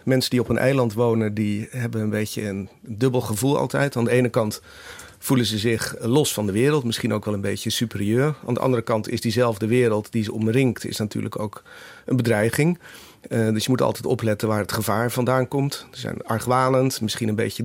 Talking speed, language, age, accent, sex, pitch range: 215 wpm, Dutch, 40-59, Dutch, male, 110-125 Hz